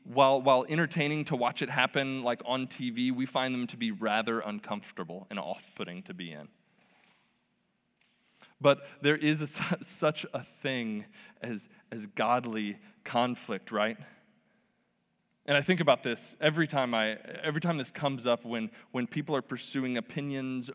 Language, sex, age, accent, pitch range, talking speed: English, male, 20-39, American, 120-170 Hz, 155 wpm